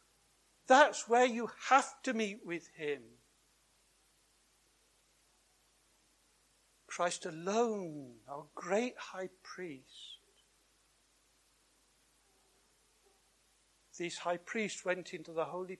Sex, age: male, 60-79